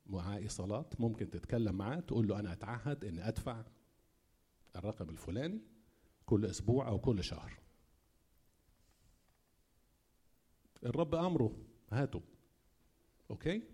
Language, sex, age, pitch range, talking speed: Arabic, male, 50-69, 95-130 Hz, 95 wpm